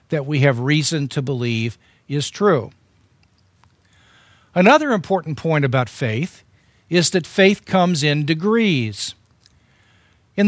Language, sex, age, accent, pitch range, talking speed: English, male, 50-69, American, 120-190 Hz, 115 wpm